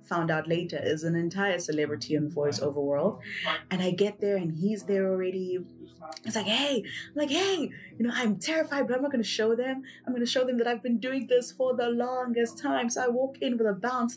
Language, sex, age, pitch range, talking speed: English, female, 20-39, 165-245 Hz, 235 wpm